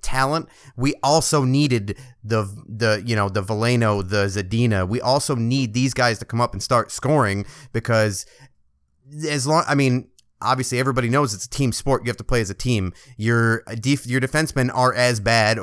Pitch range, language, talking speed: 110-135 Hz, English, 185 wpm